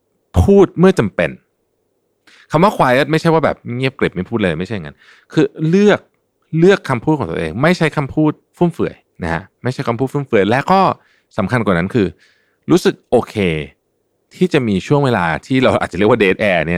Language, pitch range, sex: Thai, 95-150 Hz, male